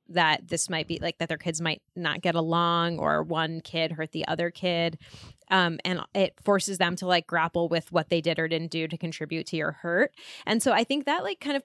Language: English